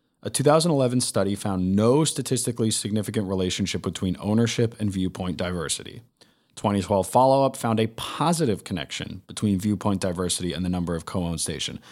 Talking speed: 140 wpm